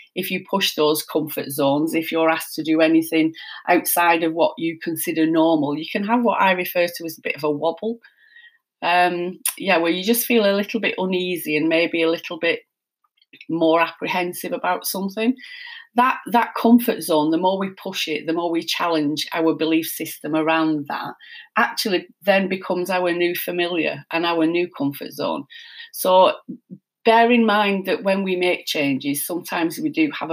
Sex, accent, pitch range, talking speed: female, British, 160-200 Hz, 180 wpm